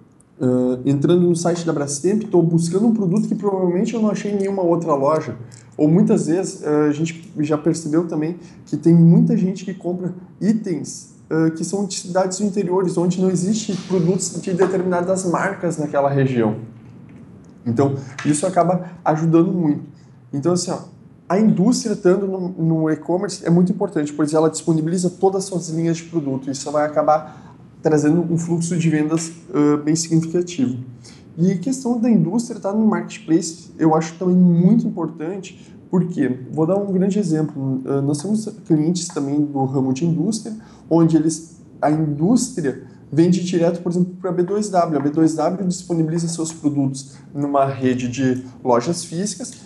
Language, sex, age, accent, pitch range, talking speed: Portuguese, male, 20-39, Brazilian, 150-185 Hz, 165 wpm